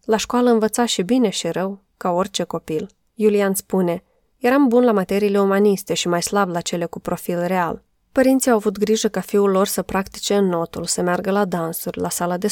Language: Romanian